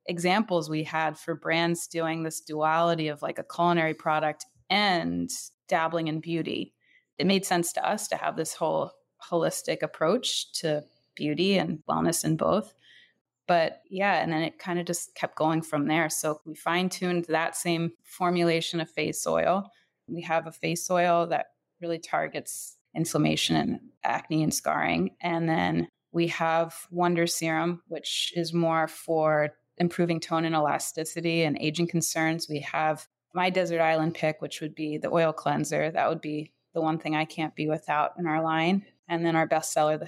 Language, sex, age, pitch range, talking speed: English, female, 20-39, 155-175 Hz, 170 wpm